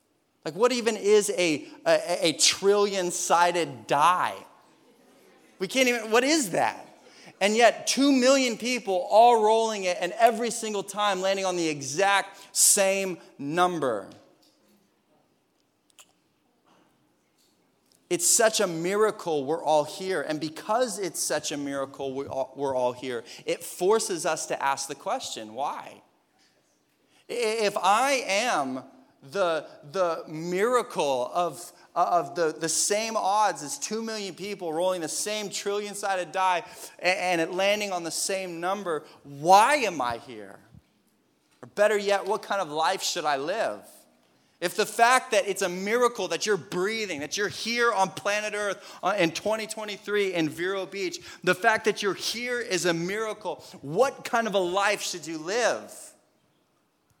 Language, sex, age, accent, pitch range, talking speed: English, male, 30-49, American, 170-220 Hz, 145 wpm